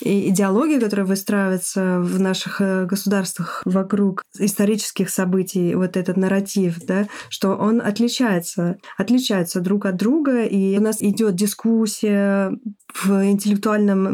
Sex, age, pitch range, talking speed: female, 20-39, 185-210 Hz, 115 wpm